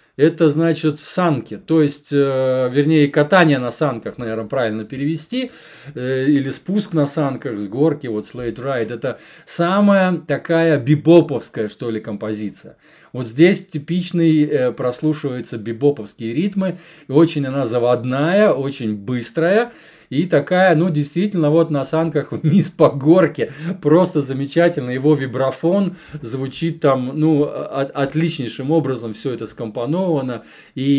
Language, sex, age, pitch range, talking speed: Russian, male, 20-39, 125-160 Hz, 130 wpm